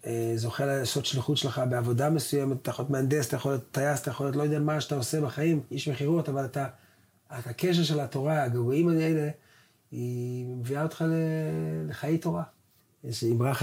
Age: 30-49